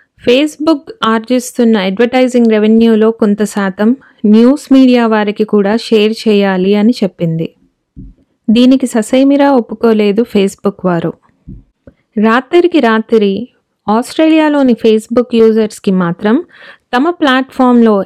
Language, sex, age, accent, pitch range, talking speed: Telugu, female, 20-39, native, 210-255 Hz, 90 wpm